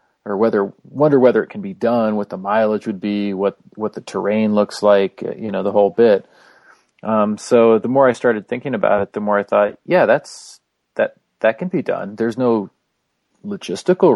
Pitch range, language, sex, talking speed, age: 100-120 Hz, English, male, 205 wpm, 40-59